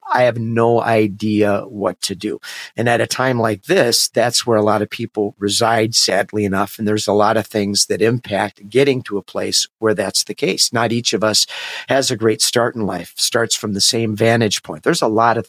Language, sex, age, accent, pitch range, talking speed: English, male, 50-69, American, 105-125 Hz, 225 wpm